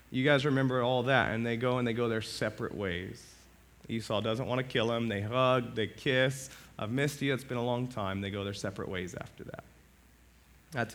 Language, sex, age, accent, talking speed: English, male, 30-49, American, 220 wpm